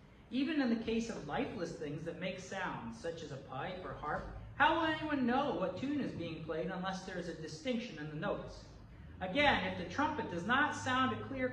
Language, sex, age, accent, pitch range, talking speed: English, male, 40-59, American, 175-255 Hz, 220 wpm